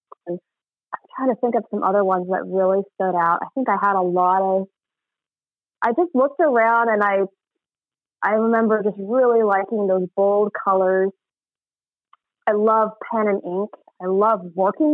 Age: 30-49